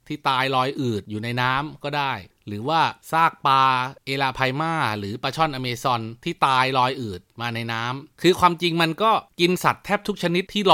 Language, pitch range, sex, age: Thai, 115-150 Hz, male, 30-49